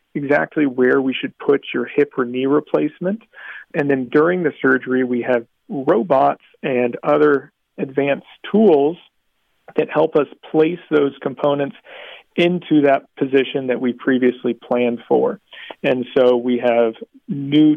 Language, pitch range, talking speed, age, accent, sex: English, 125-145 Hz, 140 wpm, 40-59, American, male